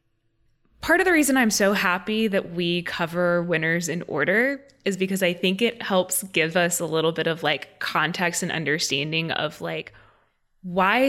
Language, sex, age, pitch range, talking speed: English, female, 20-39, 175-235 Hz, 175 wpm